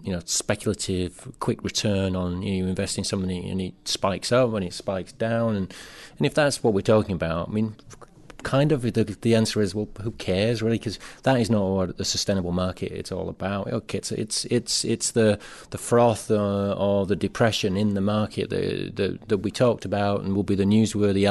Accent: British